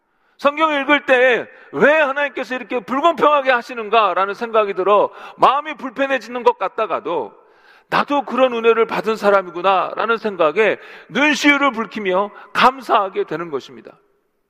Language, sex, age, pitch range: Korean, male, 40-59, 210-305 Hz